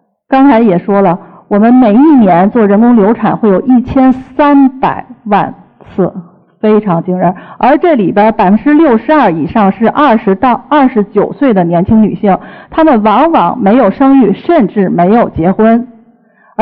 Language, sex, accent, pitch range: Chinese, female, native, 195-255 Hz